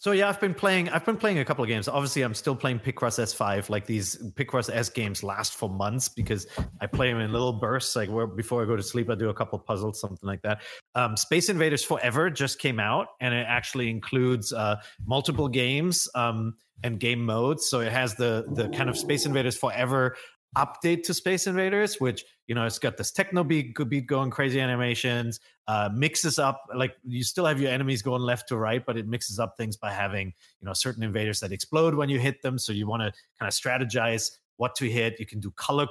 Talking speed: 230 wpm